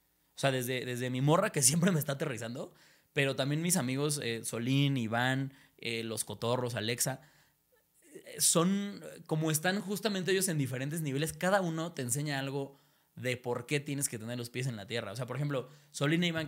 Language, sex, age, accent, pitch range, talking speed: Spanish, male, 20-39, Mexican, 120-155 Hz, 195 wpm